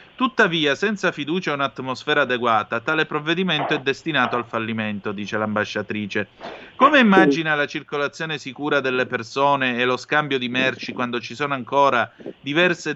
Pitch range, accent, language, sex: 120-155 Hz, native, Italian, male